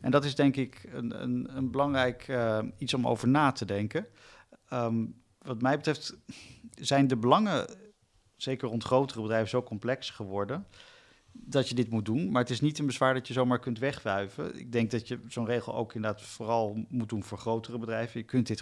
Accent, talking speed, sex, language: Dutch, 195 wpm, male, Dutch